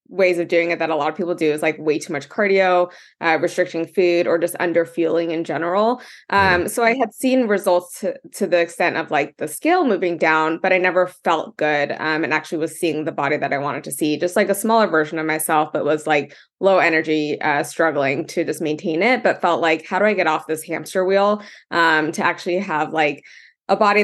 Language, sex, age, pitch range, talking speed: English, female, 20-39, 160-190 Hz, 235 wpm